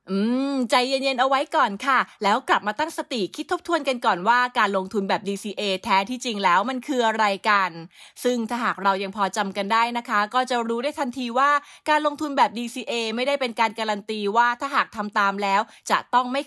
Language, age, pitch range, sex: English, 20-39, 200-250 Hz, female